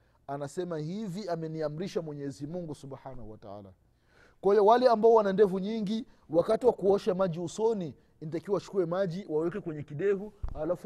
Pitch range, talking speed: 145-200 Hz, 145 wpm